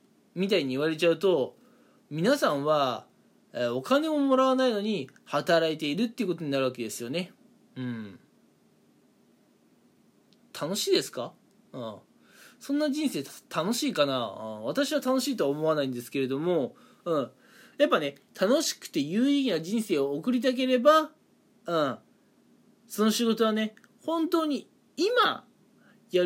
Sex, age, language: male, 20-39, Japanese